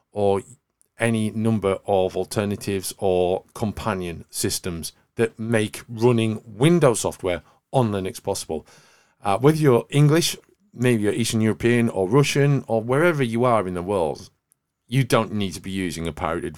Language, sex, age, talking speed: English, male, 40-59, 150 wpm